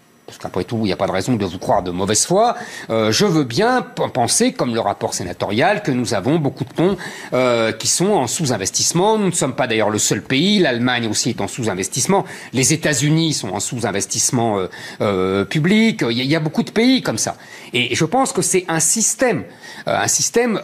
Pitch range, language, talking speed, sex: 115-180 Hz, French, 225 wpm, male